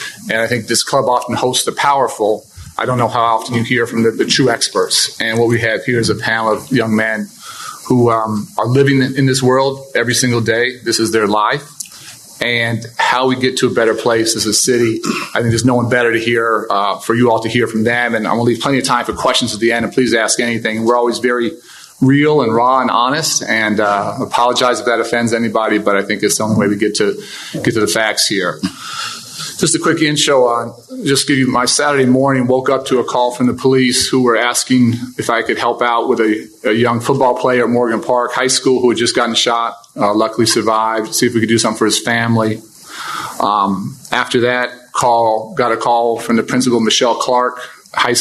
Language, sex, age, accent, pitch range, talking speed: English, male, 40-59, American, 115-125 Hz, 235 wpm